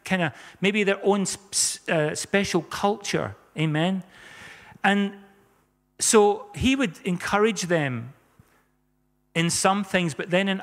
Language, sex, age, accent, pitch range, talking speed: English, male, 40-59, British, 150-190 Hz, 120 wpm